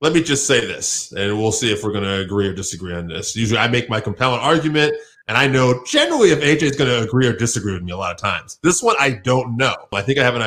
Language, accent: English, American